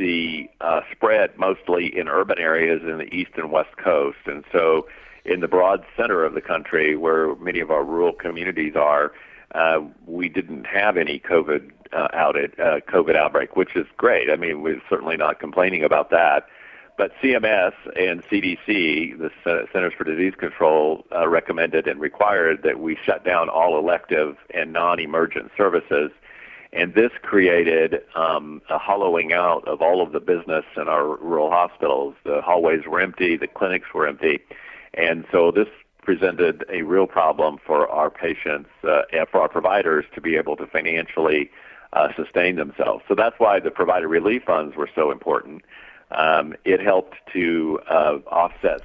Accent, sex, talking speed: American, male, 170 wpm